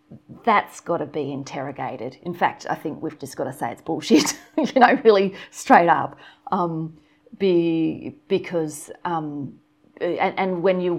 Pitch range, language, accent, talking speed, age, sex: 160-195 Hz, English, Australian, 160 wpm, 30-49, female